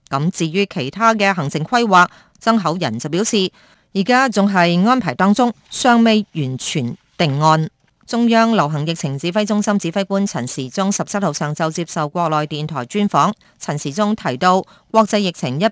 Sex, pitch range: female, 160-210 Hz